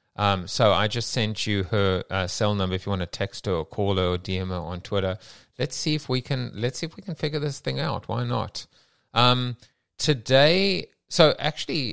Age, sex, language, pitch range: 30-49, male, English, 95-120 Hz